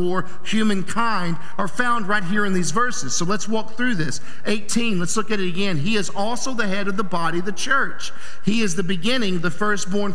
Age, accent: 50-69, American